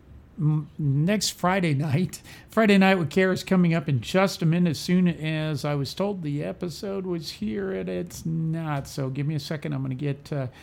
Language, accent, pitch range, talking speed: English, American, 140-170 Hz, 200 wpm